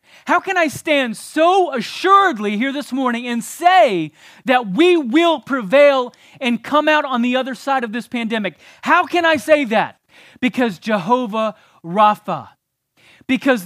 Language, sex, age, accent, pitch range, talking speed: English, male, 40-59, American, 185-255 Hz, 150 wpm